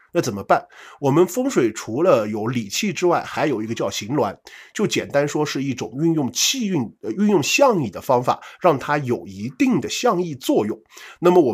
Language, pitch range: Chinese, 110-180 Hz